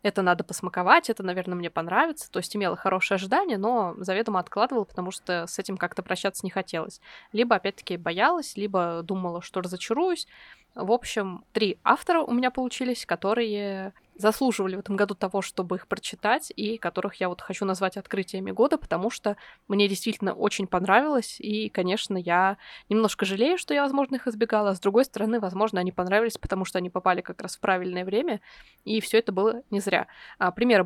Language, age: Russian, 20-39